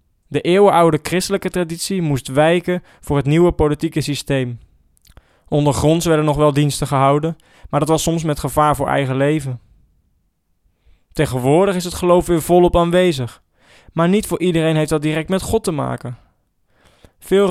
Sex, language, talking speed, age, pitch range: male, English, 155 wpm, 20-39, 140-175 Hz